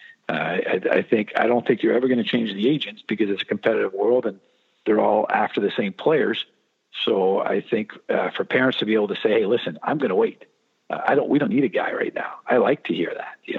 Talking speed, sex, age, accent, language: 260 wpm, male, 50-69, American, English